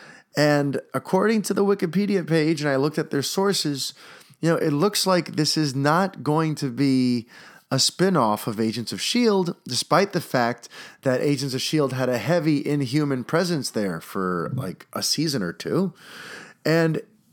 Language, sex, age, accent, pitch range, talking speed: English, male, 20-39, American, 120-175 Hz, 170 wpm